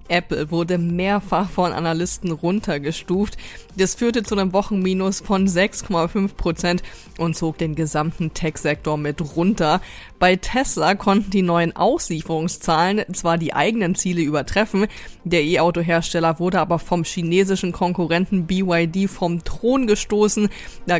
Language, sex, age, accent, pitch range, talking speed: German, female, 20-39, German, 165-195 Hz, 125 wpm